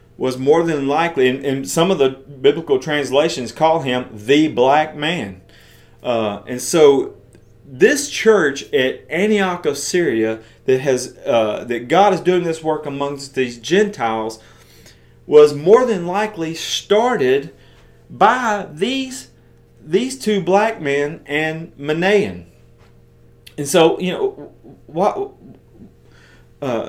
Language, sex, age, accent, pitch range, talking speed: English, male, 40-59, American, 130-185 Hz, 125 wpm